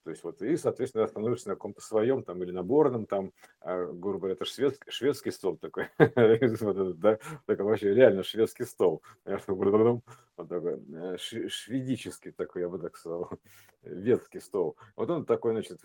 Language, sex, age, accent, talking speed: Russian, male, 50-69, native, 160 wpm